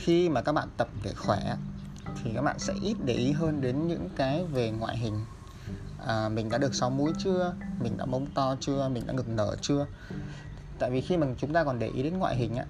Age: 20-39